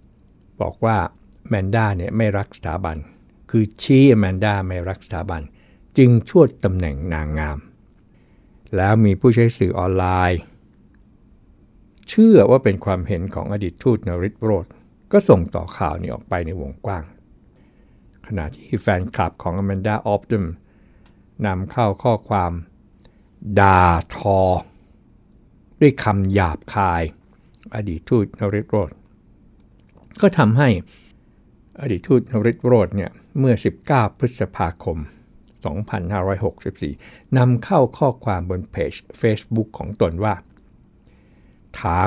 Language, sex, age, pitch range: Thai, male, 60-79, 90-110 Hz